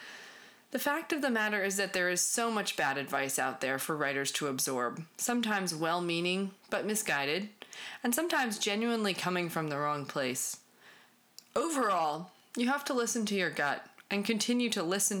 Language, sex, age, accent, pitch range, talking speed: English, female, 30-49, American, 145-200 Hz, 170 wpm